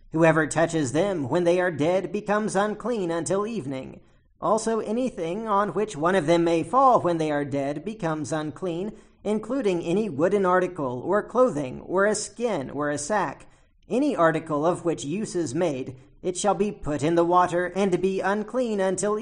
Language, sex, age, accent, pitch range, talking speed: English, male, 40-59, American, 150-200 Hz, 175 wpm